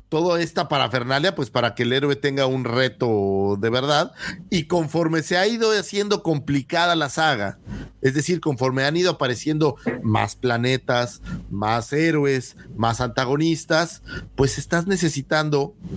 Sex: male